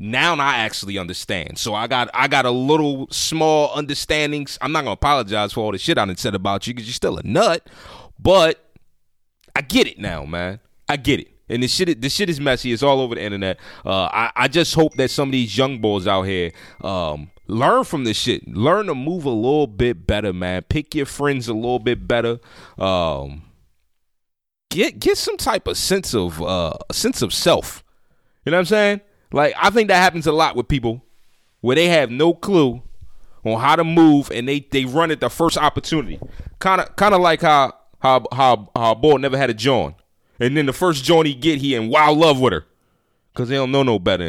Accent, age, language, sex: American, 30-49, English, male